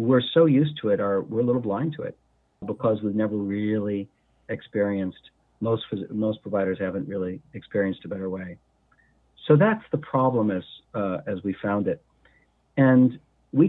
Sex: male